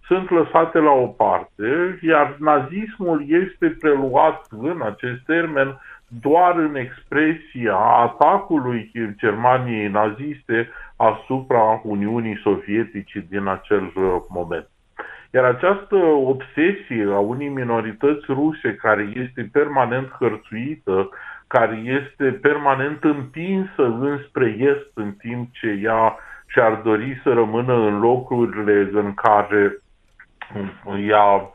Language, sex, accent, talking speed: Romanian, male, native, 105 wpm